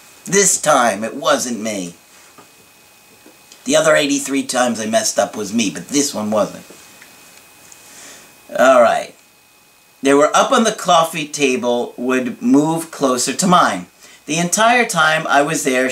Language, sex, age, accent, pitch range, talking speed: English, male, 40-59, American, 135-185 Hz, 145 wpm